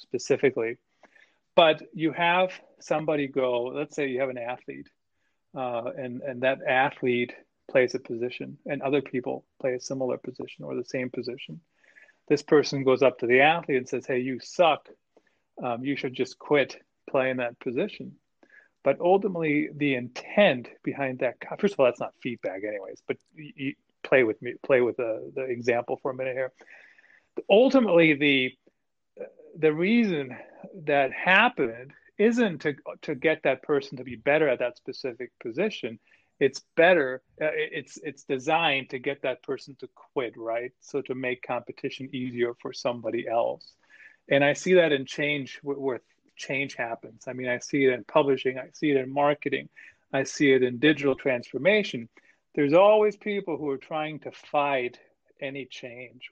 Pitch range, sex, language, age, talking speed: 130-160 Hz, male, English, 40-59, 165 wpm